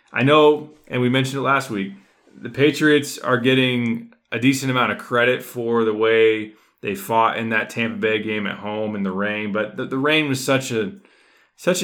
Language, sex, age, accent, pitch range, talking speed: English, male, 20-39, American, 105-125 Hz, 205 wpm